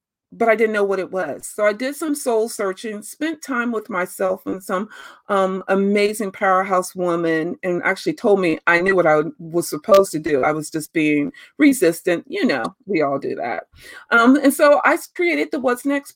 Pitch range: 185-260 Hz